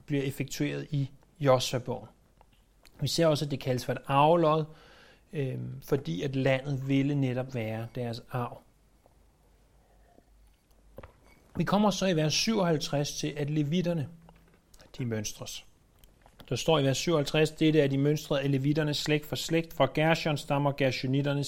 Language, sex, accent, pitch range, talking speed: Danish, male, native, 135-165 Hz, 150 wpm